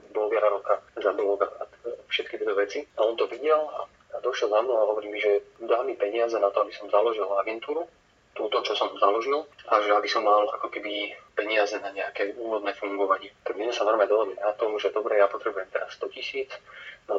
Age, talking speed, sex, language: 30-49, 210 wpm, male, Slovak